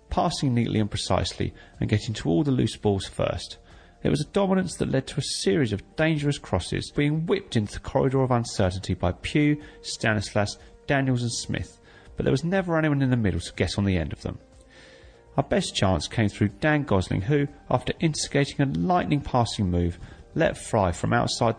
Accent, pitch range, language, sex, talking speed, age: British, 95-140 Hz, English, male, 195 wpm, 30-49